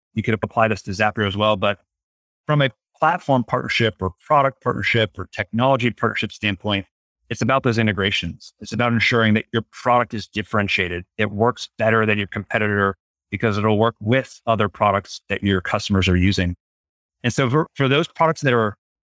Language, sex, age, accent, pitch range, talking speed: English, male, 30-49, American, 100-120 Hz, 180 wpm